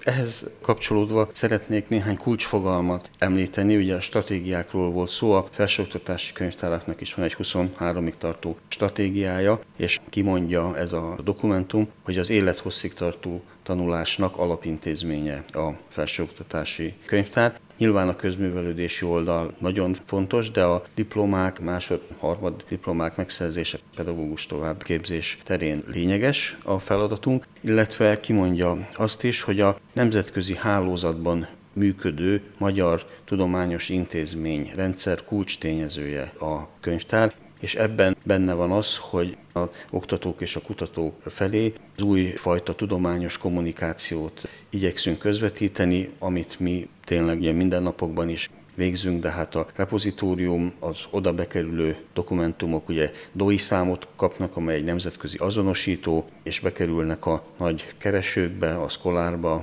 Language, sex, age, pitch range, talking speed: Hungarian, male, 40-59, 85-100 Hz, 115 wpm